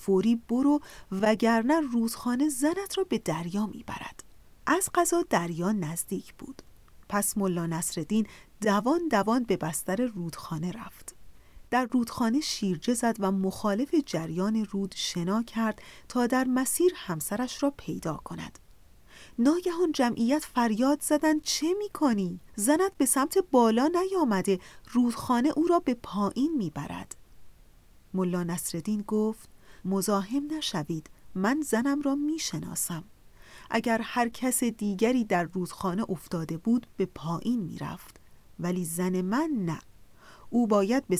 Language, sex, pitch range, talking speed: Persian, female, 180-265 Hz, 120 wpm